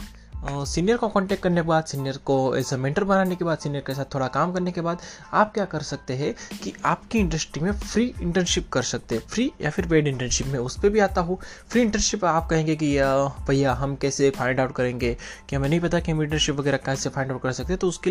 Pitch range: 135-170 Hz